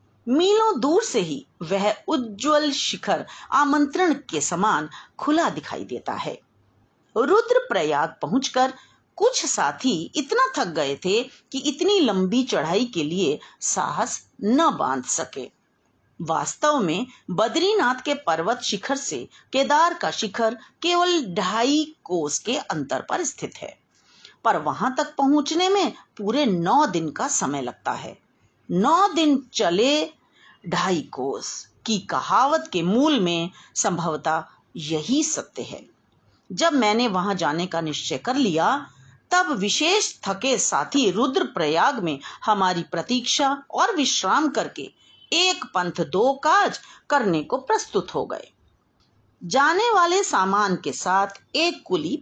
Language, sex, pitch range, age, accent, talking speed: Hindi, female, 200-325 Hz, 50-69, native, 130 wpm